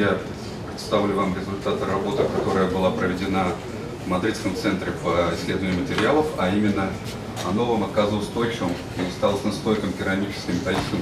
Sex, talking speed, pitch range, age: male, 125 wpm, 100-130 Hz, 30-49